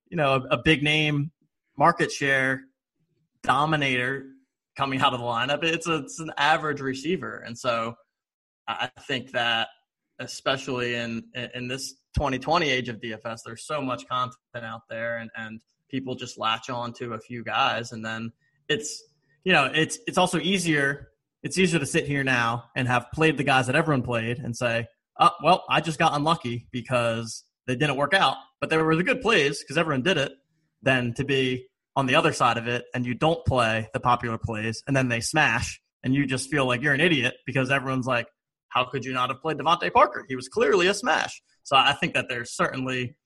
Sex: male